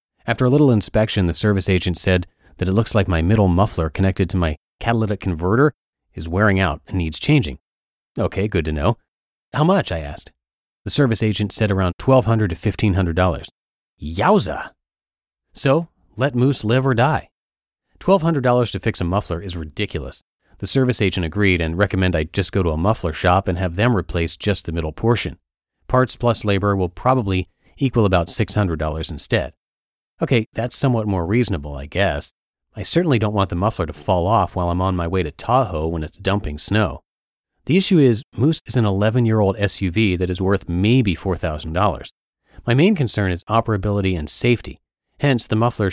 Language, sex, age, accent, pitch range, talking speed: English, male, 30-49, American, 90-115 Hz, 180 wpm